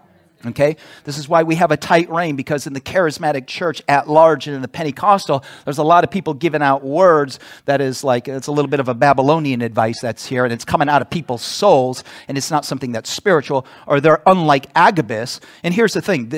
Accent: American